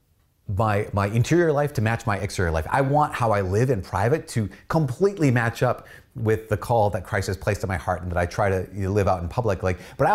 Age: 30-49